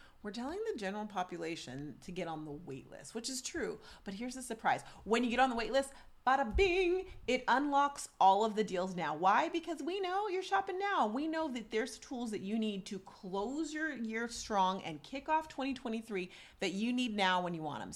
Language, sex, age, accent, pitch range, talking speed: English, female, 30-49, American, 185-250 Hz, 220 wpm